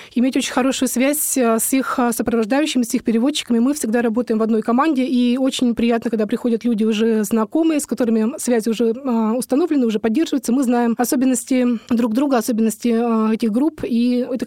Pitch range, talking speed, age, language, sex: 225-260 Hz, 170 wpm, 20-39, Russian, female